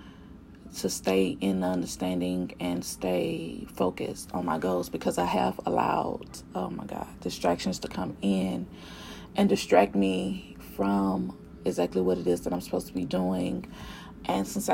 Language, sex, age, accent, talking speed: English, female, 30-49, American, 150 wpm